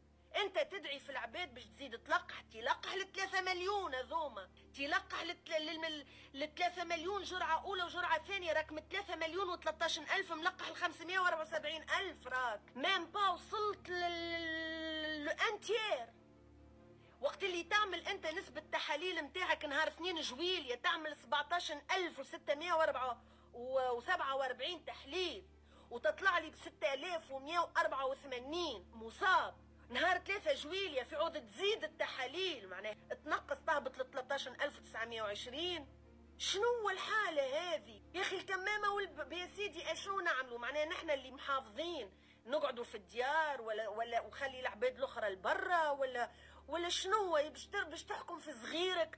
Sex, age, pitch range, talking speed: female, 30-49, 285-360 Hz, 125 wpm